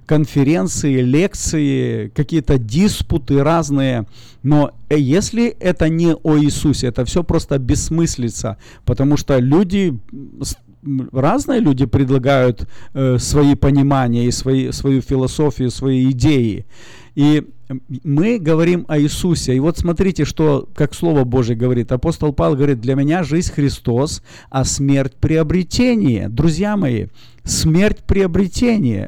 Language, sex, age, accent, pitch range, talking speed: Russian, male, 40-59, native, 130-170 Hz, 120 wpm